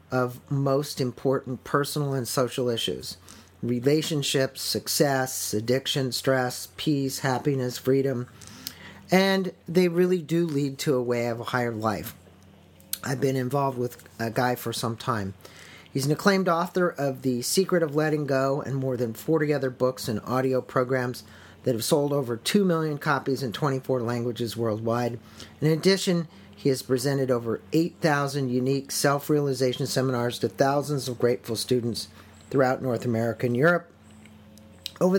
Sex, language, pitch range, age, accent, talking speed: male, English, 120-150 Hz, 50-69, American, 145 wpm